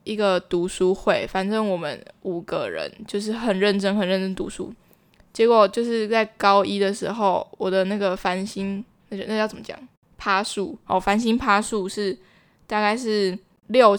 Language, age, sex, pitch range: Chinese, 10-29, female, 195-225 Hz